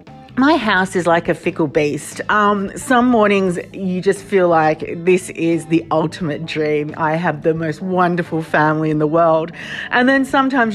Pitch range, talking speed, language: 170-265 Hz, 175 wpm, English